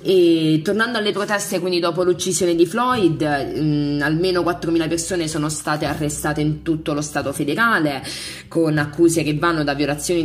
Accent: native